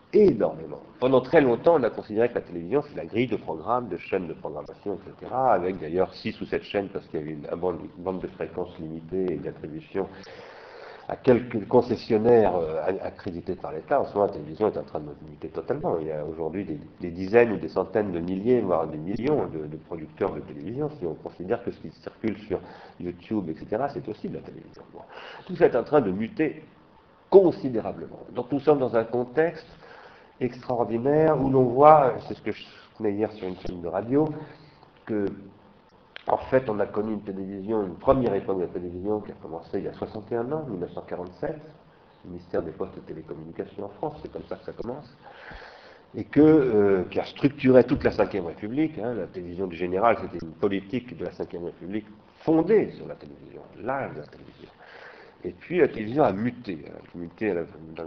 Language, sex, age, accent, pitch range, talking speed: French, male, 50-69, French, 90-135 Hz, 205 wpm